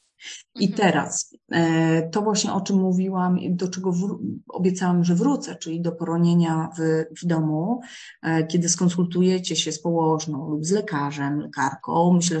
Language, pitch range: Polish, 160-180 Hz